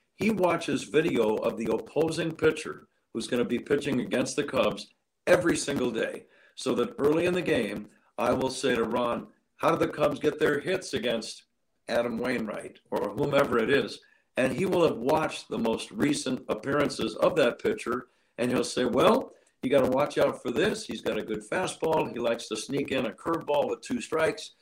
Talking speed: 195 wpm